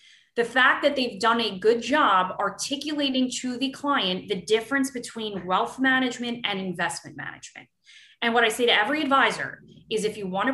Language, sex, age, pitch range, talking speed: English, female, 20-39, 185-245 Hz, 180 wpm